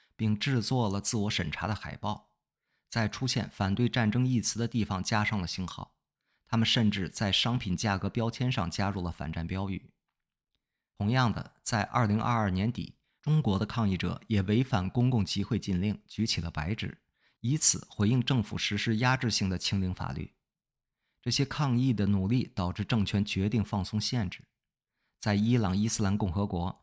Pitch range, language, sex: 95-115 Hz, English, male